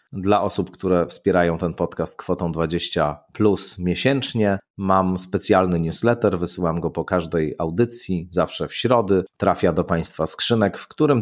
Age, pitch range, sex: 30-49, 90-115 Hz, male